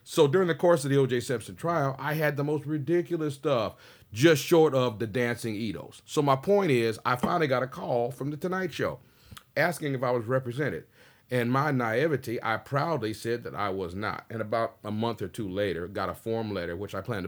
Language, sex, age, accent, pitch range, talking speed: English, male, 40-59, American, 100-130 Hz, 220 wpm